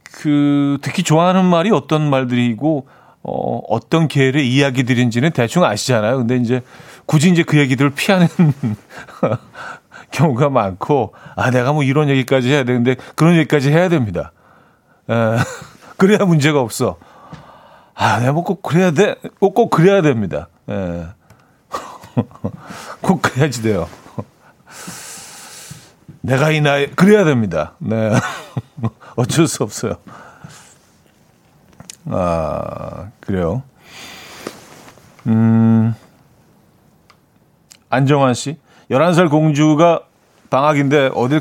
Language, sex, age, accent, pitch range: Korean, male, 40-59, native, 125-155 Hz